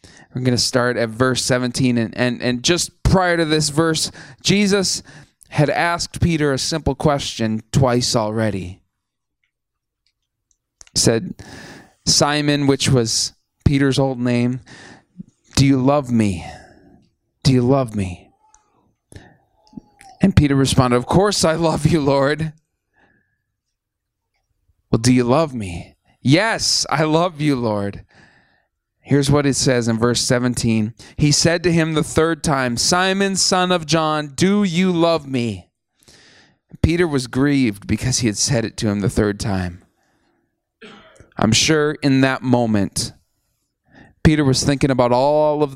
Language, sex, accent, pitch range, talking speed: English, male, American, 110-150 Hz, 135 wpm